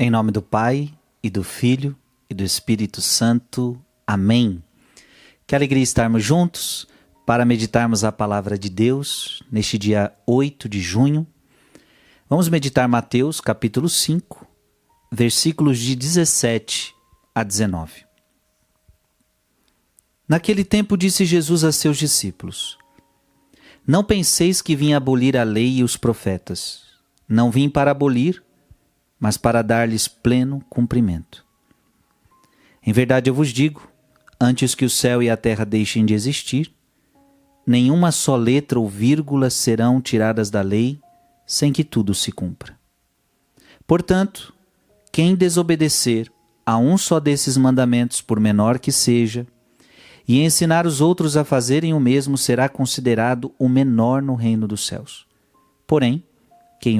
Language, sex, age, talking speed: Portuguese, male, 40-59, 130 wpm